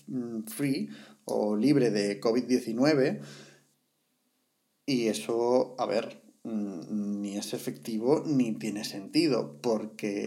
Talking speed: 95 wpm